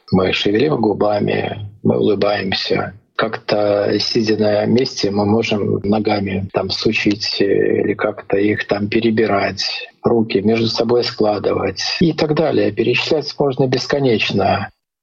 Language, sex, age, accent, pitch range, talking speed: Russian, male, 40-59, native, 105-115 Hz, 115 wpm